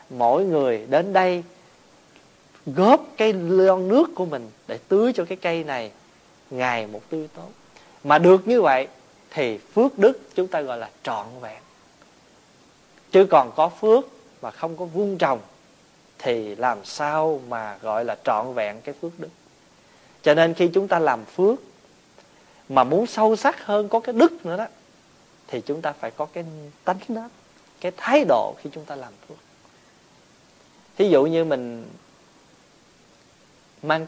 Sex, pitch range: male, 145-215 Hz